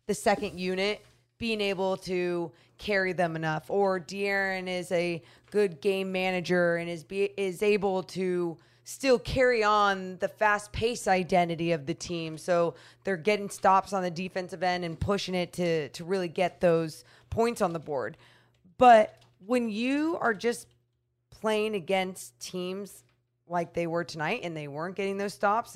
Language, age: English, 20-39